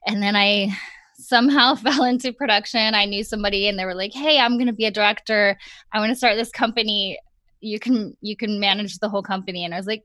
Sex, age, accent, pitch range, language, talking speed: female, 20-39, American, 195-230 Hz, English, 235 wpm